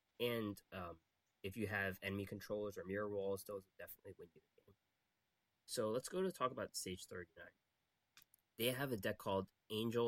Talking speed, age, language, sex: 180 wpm, 20-39, English, male